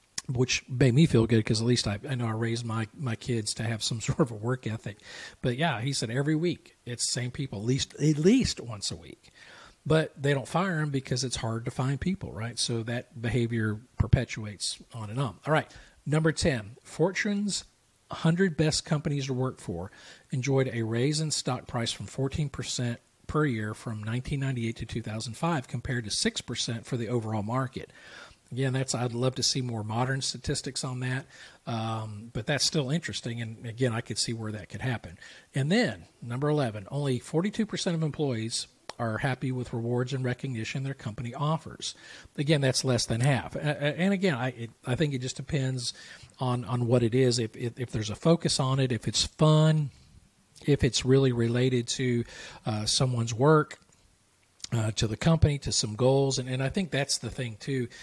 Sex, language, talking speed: male, English, 190 wpm